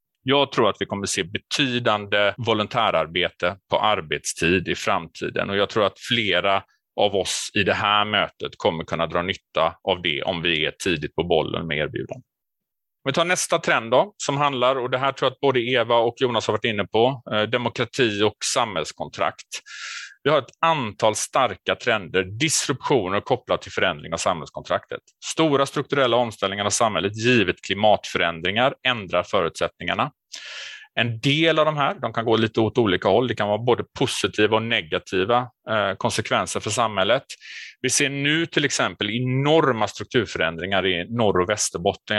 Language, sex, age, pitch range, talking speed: Swedish, male, 30-49, 105-135 Hz, 165 wpm